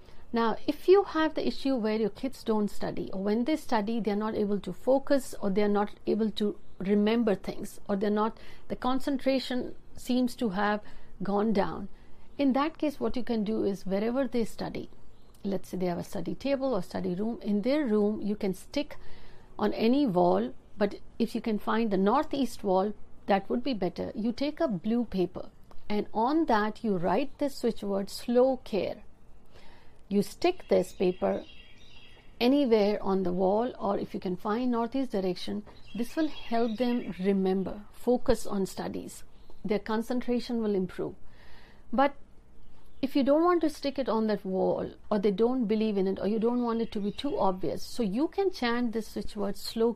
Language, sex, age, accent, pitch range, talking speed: Hindi, female, 60-79, native, 195-245 Hz, 190 wpm